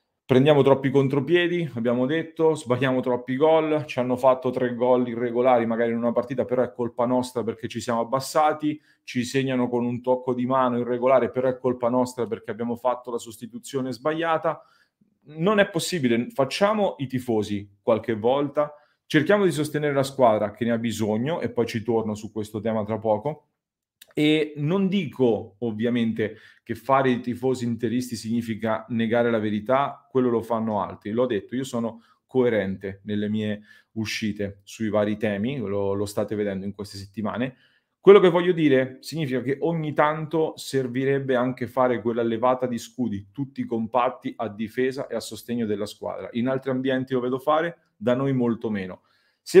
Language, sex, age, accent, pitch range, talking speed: Italian, male, 30-49, native, 115-140 Hz, 170 wpm